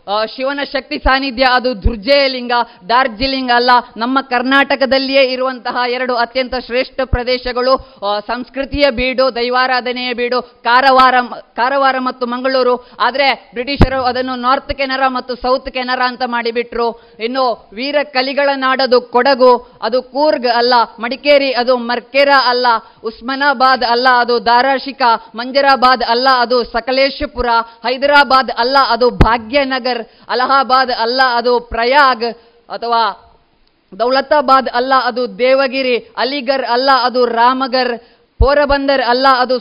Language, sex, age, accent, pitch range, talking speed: Kannada, female, 20-39, native, 235-265 Hz, 110 wpm